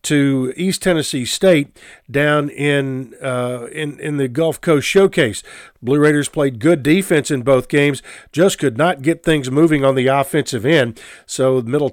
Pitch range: 135-170 Hz